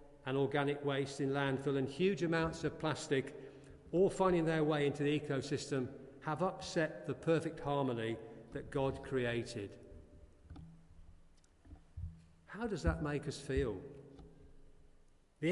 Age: 40-59